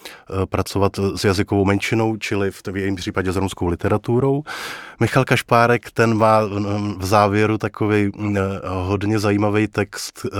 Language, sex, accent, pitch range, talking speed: Czech, male, native, 95-110 Hz, 120 wpm